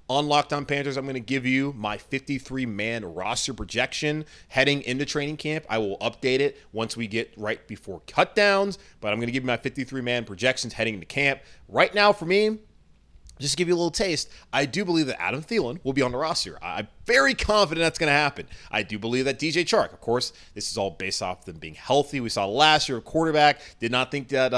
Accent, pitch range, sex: American, 120-175 Hz, male